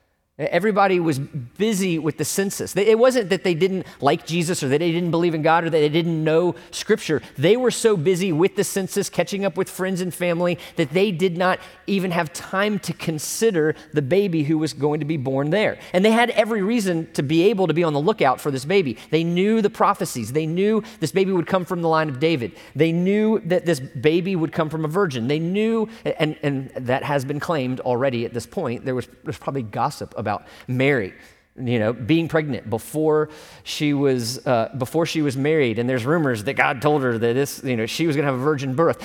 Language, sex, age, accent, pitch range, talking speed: English, male, 30-49, American, 145-190 Hz, 230 wpm